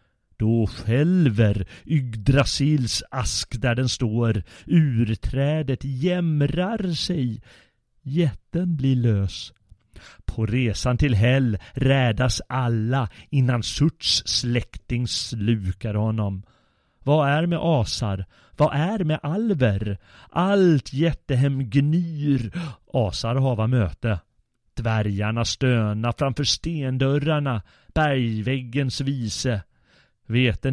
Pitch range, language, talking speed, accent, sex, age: 105-135 Hz, Swedish, 90 wpm, native, male, 30-49